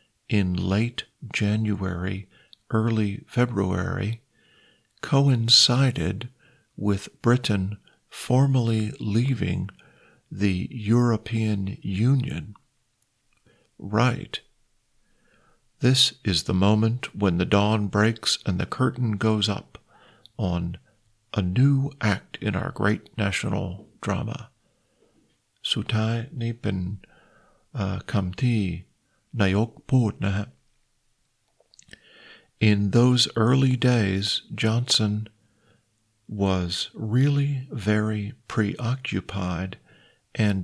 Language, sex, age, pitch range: Thai, male, 50-69, 100-120 Hz